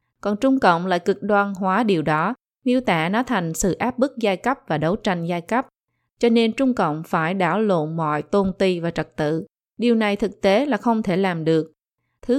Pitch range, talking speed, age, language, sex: 170-220 Hz, 225 wpm, 20-39, Vietnamese, female